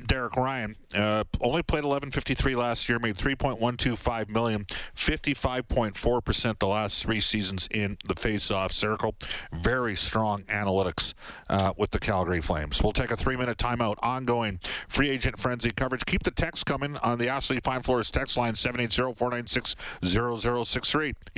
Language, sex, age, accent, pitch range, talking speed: English, male, 50-69, American, 100-125 Hz, 145 wpm